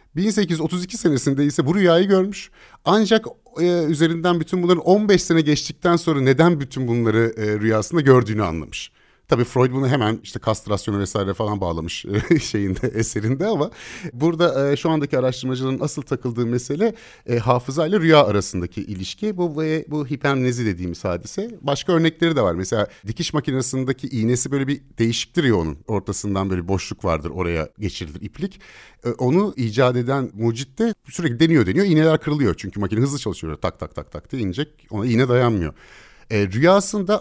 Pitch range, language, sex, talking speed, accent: 110-165 Hz, Turkish, male, 155 wpm, native